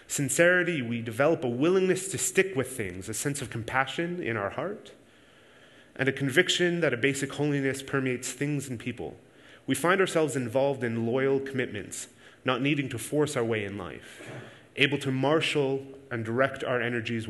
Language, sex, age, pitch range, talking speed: English, male, 30-49, 125-155 Hz, 170 wpm